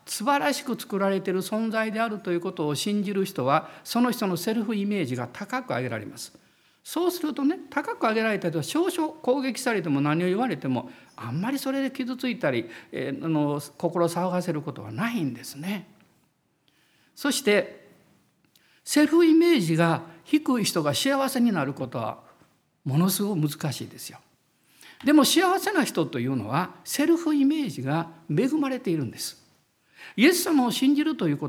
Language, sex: Japanese, male